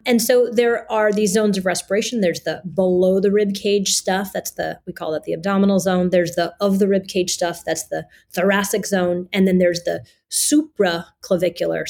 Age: 30-49